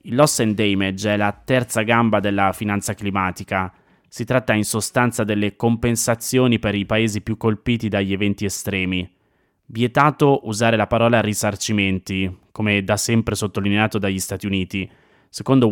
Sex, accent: male, native